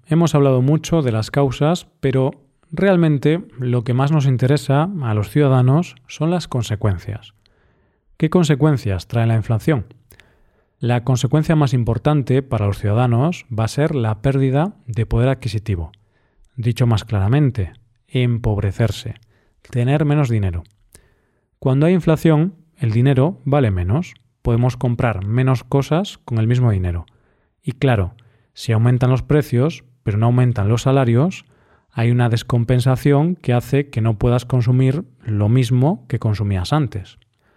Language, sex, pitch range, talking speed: Spanish, male, 115-145 Hz, 135 wpm